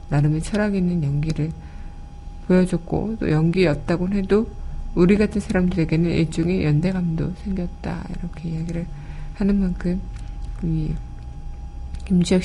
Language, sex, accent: Korean, female, native